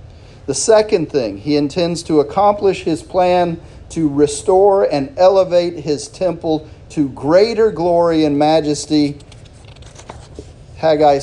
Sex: male